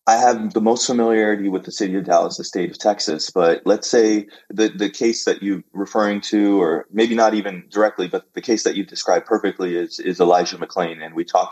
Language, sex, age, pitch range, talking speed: English, male, 20-39, 90-105 Hz, 225 wpm